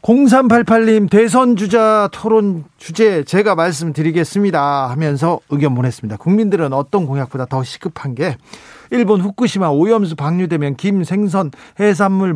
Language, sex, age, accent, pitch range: Korean, male, 40-59, native, 145-205 Hz